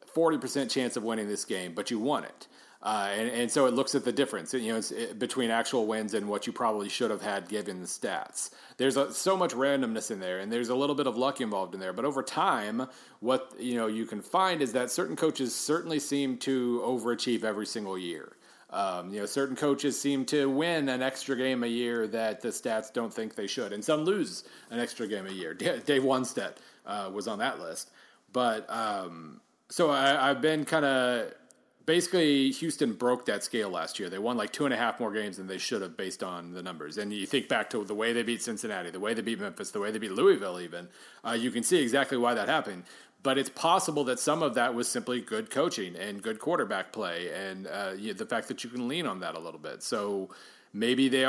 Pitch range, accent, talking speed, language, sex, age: 115-140 Hz, American, 235 wpm, English, male, 40-59